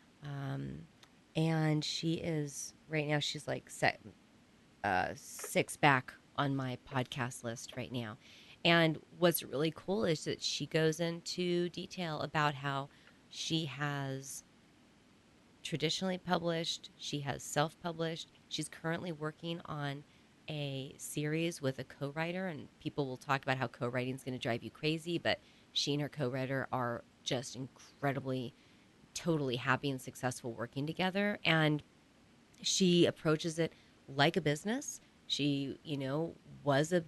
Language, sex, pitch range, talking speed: English, female, 130-160 Hz, 140 wpm